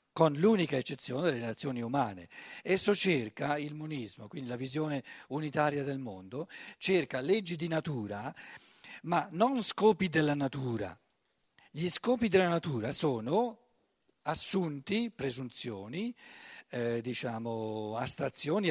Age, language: 50-69, Italian